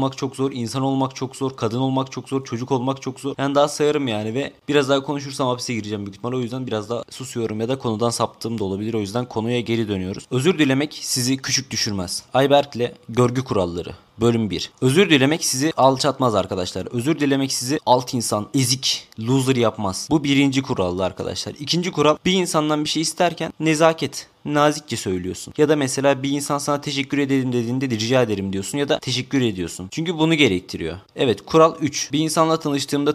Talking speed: 190 wpm